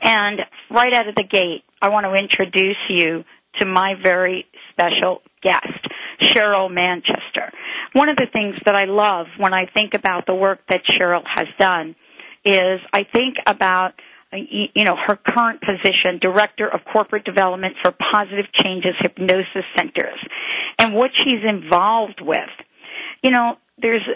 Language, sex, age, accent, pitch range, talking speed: English, female, 50-69, American, 185-225 Hz, 150 wpm